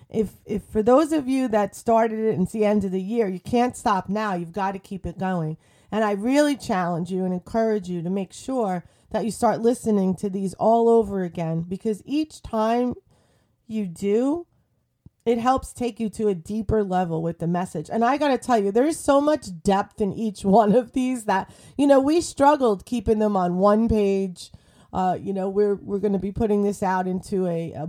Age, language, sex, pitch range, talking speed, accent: 30-49, English, female, 185-235 Hz, 215 wpm, American